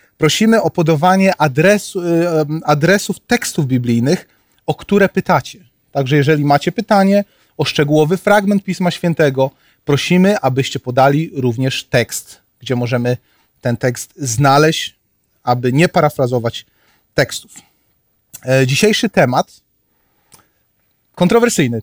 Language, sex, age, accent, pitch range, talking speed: Polish, male, 30-49, native, 125-165 Hz, 95 wpm